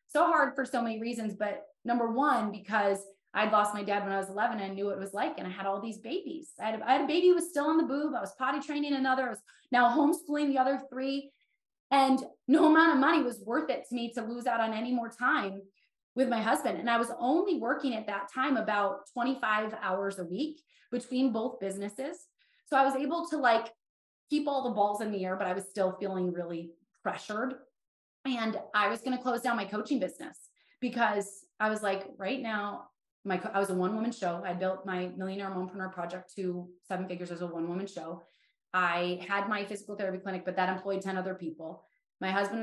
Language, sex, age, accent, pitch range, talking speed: English, female, 20-39, American, 195-275 Hz, 230 wpm